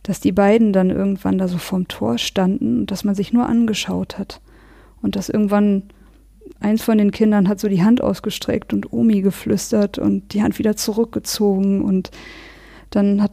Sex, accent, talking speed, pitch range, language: female, German, 180 wpm, 190-225 Hz, German